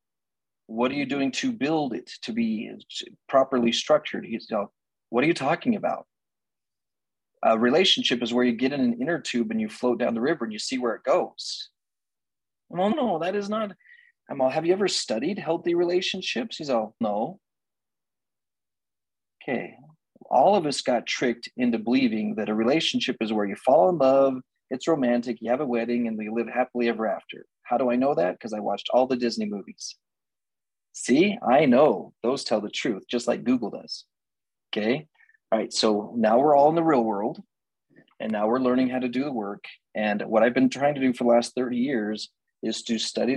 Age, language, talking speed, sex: 30-49, English, 200 wpm, male